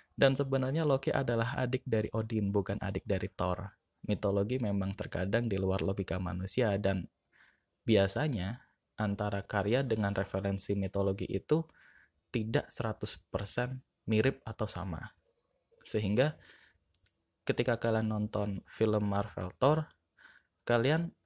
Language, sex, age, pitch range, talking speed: Indonesian, male, 20-39, 100-120 Hz, 110 wpm